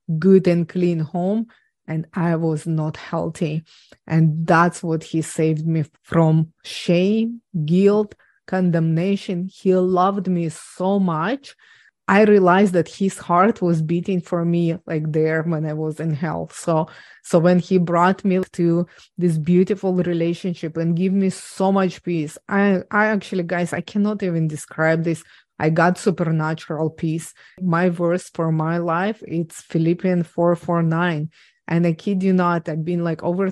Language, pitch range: English, 165-195 Hz